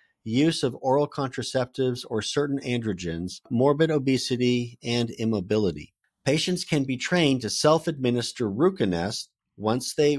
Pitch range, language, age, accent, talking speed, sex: 110-150 Hz, English, 50-69, American, 125 wpm, male